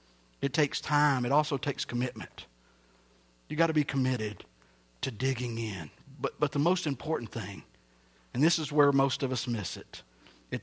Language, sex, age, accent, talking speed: English, male, 50-69, American, 175 wpm